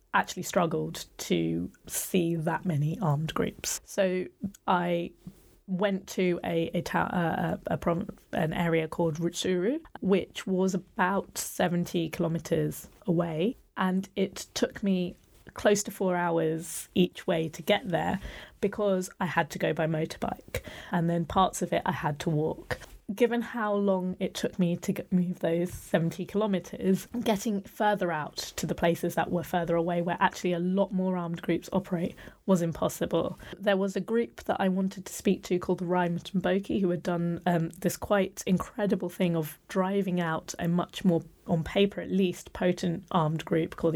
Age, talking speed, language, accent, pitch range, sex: 20-39, 170 wpm, English, British, 170-195 Hz, female